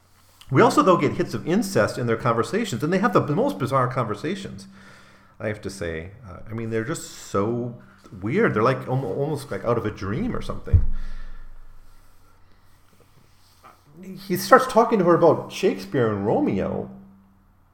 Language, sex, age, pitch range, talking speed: English, male, 40-59, 95-125 Hz, 160 wpm